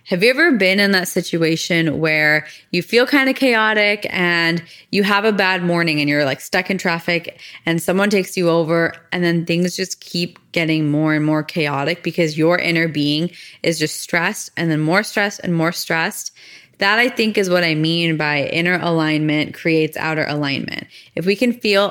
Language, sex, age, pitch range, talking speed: English, female, 20-39, 165-200 Hz, 195 wpm